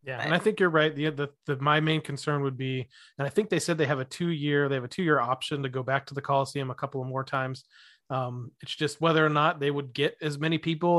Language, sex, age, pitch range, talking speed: English, male, 30-49, 135-155 Hz, 290 wpm